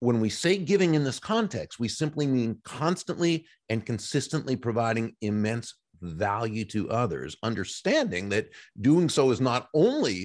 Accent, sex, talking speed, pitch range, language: American, male, 145 wpm, 105-135 Hz, English